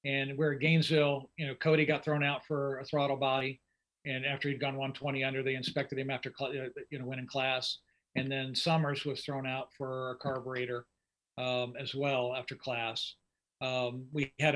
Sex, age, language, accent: male, 50-69, English, American